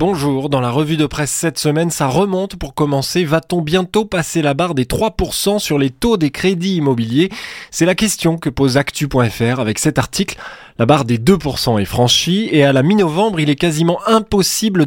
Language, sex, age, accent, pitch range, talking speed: French, male, 20-39, French, 120-170 Hz, 195 wpm